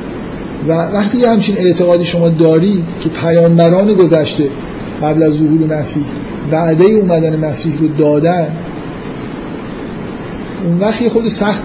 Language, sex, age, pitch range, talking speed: Persian, male, 50-69, 155-180 Hz, 120 wpm